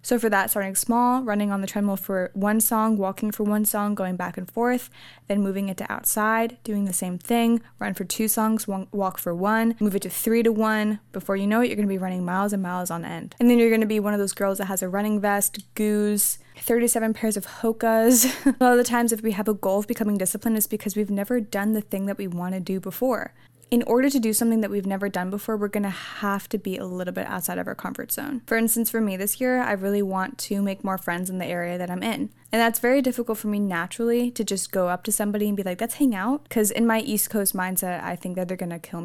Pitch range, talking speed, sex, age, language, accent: 195-230 Hz, 265 wpm, female, 10-29, English, American